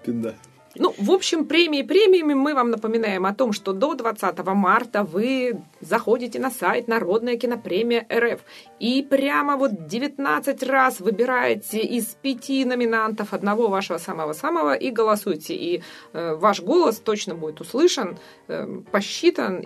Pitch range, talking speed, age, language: 190-265 Hz, 130 wpm, 20-39, Russian